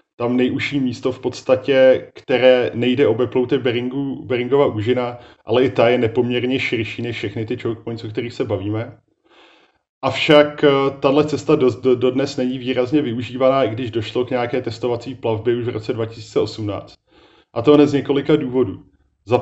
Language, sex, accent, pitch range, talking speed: Czech, male, native, 115-130 Hz, 155 wpm